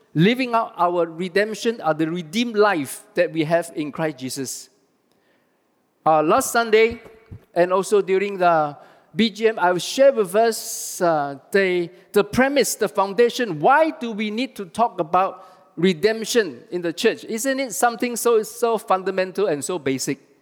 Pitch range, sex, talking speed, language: 170-230 Hz, male, 155 wpm, English